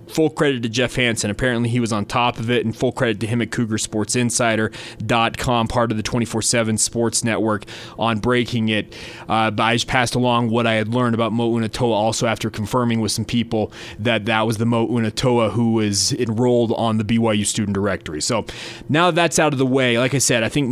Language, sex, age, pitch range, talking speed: English, male, 20-39, 115-130 Hz, 210 wpm